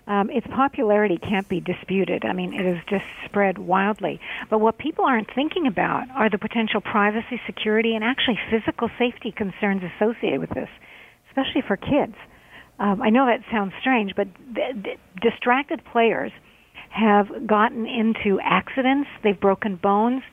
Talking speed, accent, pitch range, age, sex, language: 155 wpm, American, 205-245 Hz, 50-69, female, English